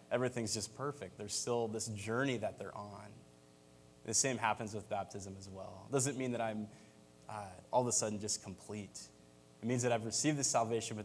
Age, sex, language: 20-39, male, English